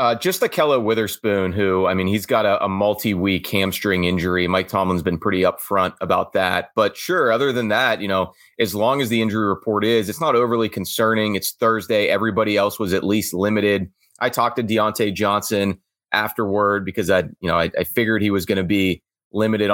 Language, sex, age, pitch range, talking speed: English, male, 30-49, 95-110 Hz, 205 wpm